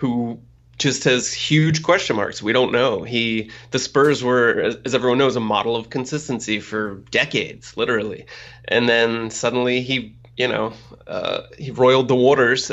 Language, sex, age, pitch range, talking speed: English, male, 30-49, 110-130 Hz, 160 wpm